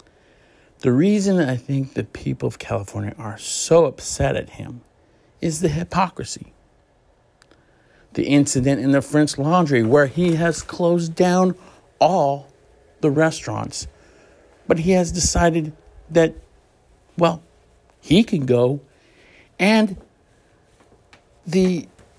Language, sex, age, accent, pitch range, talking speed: English, male, 60-79, American, 140-185 Hz, 110 wpm